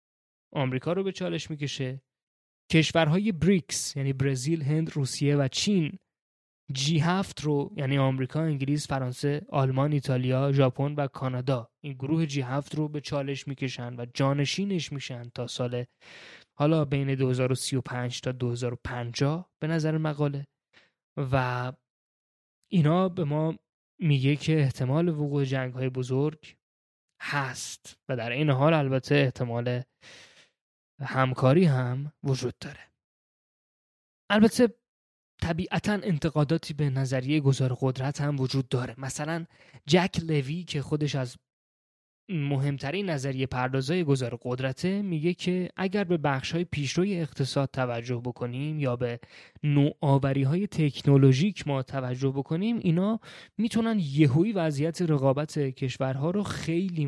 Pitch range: 130-160 Hz